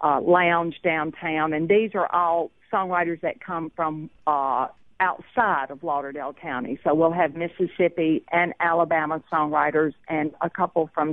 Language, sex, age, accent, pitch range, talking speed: English, female, 50-69, American, 155-190 Hz, 145 wpm